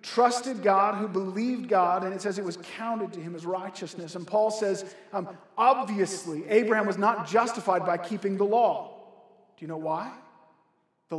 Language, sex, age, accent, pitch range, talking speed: English, male, 40-59, American, 170-215 Hz, 175 wpm